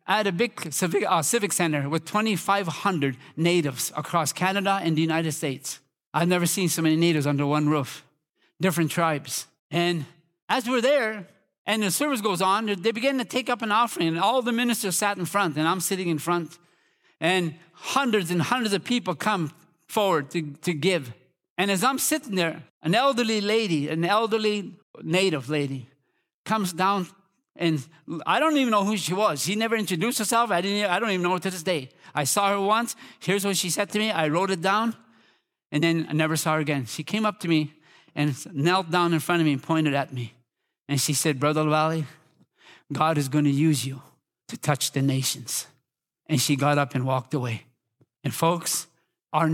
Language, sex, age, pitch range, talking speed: English, male, 50-69, 150-200 Hz, 200 wpm